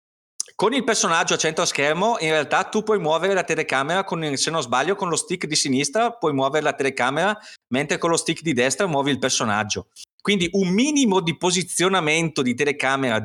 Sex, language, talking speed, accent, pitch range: male, Italian, 185 wpm, native, 125-180 Hz